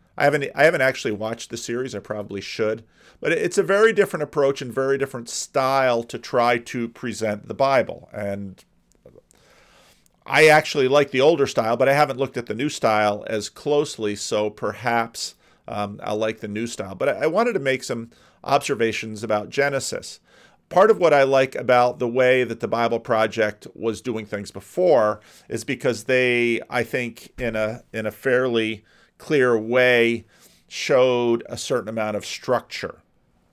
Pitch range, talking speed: 105-135 Hz, 170 wpm